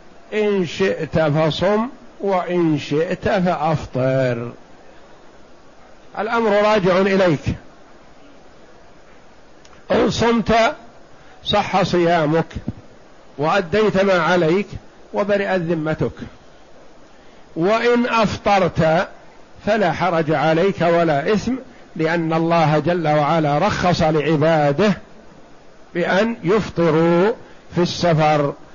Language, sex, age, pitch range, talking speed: Arabic, male, 50-69, 165-205 Hz, 75 wpm